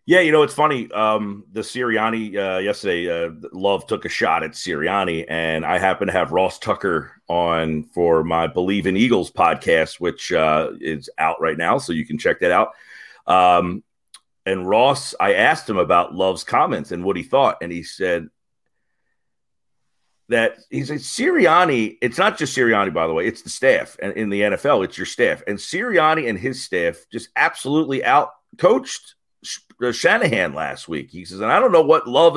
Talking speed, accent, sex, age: 185 wpm, American, male, 40-59